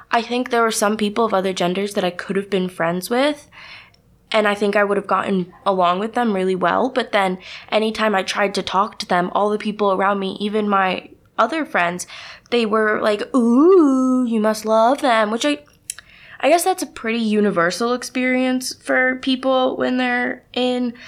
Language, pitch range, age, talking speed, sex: English, 195-245 Hz, 20-39, 195 wpm, female